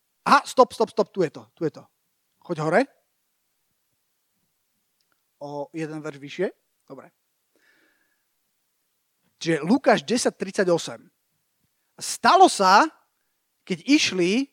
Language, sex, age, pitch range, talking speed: Slovak, male, 30-49, 175-250 Hz, 105 wpm